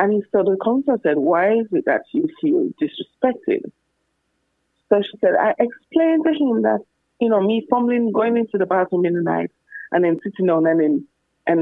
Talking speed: 185 wpm